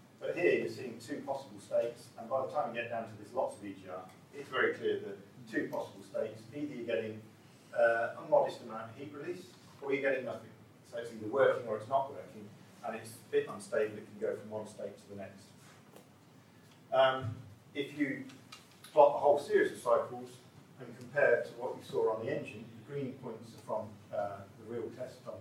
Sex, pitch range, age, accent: male, 110-145 Hz, 40-59, British